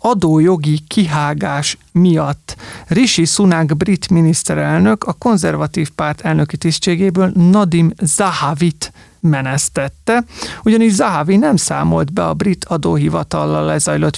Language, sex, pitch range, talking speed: Hungarian, male, 150-190 Hz, 100 wpm